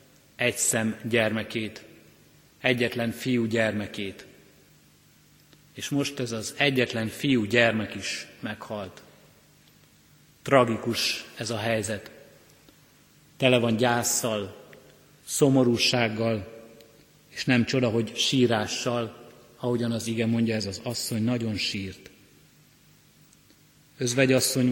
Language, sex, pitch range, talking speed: Hungarian, male, 115-130 Hz, 90 wpm